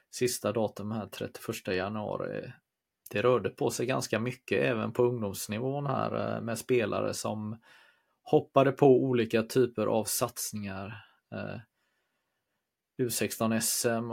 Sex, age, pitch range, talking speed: male, 30-49, 110-125 Hz, 105 wpm